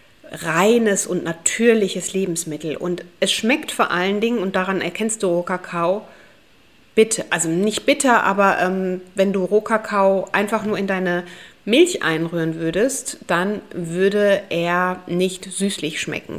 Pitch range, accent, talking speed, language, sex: 170-205 Hz, German, 130 wpm, German, female